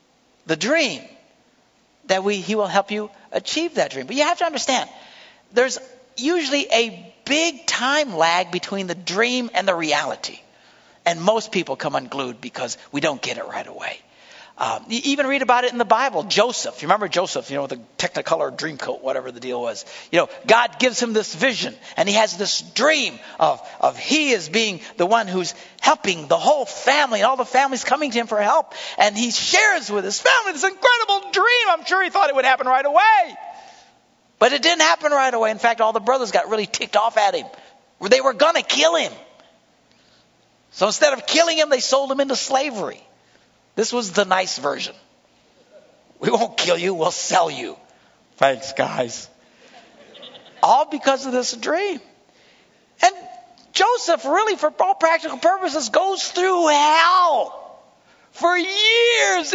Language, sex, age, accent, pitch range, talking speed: English, male, 60-79, American, 220-345 Hz, 180 wpm